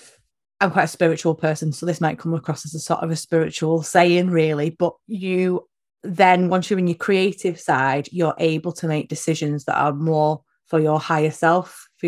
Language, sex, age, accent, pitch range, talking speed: English, female, 20-39, British, 160-200 Hz, 200 wpm